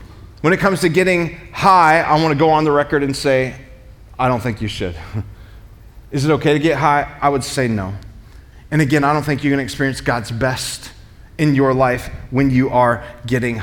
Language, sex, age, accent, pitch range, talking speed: English, male, 30-49, American, 135-200 Hz, 210 wpm